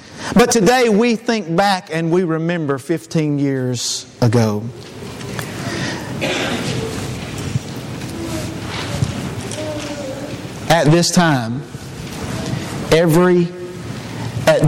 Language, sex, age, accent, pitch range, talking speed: English, male, 40-59, American, 125-175 Hz, 65 wpm